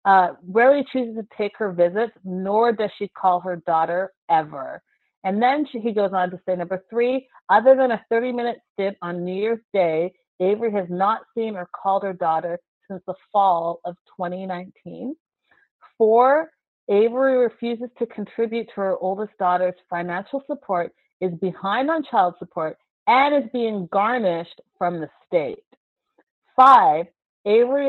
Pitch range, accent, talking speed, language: 180-235 Hz, American, 150 wpm, English